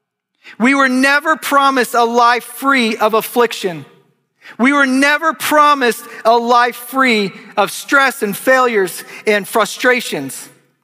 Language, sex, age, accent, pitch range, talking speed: English, male, 40-59, American, 170-245 Hz, 120 wpm